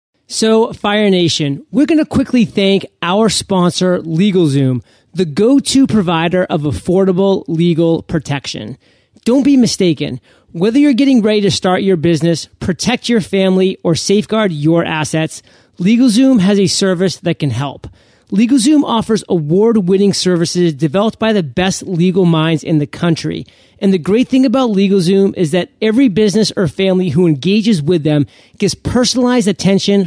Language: English